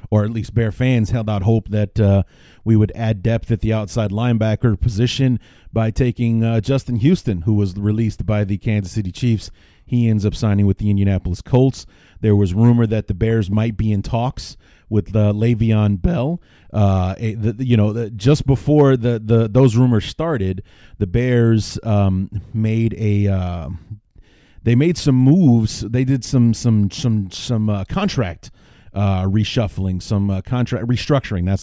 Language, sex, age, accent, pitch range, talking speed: English, male, 30-49, American, 100-120 Hz, 175 wpm